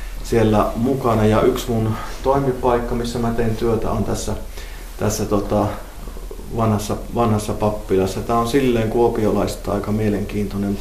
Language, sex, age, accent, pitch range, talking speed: Finnish, male, 30-49, native, 100-115 Hz, 130 wpm